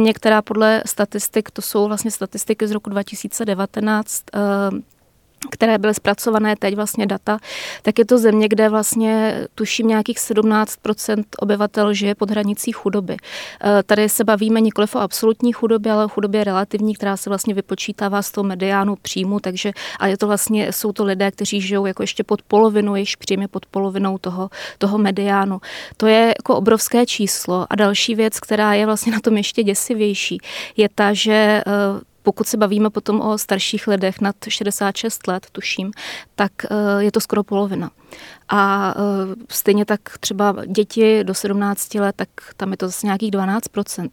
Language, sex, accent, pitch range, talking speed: Czech, female, native, 200-220 Hz, 165 wpm